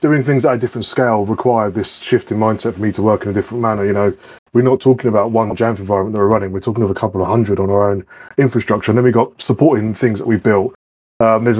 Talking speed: 275 wpm